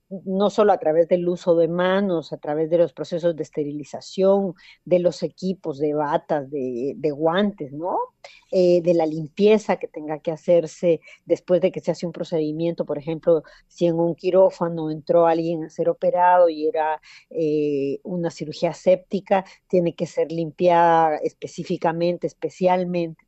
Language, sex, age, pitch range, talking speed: Spanish, female, 40-59, 170-210 Hz, 160 wpm